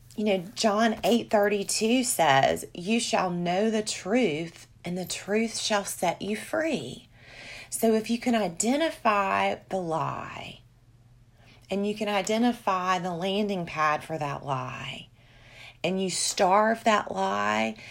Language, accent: English, American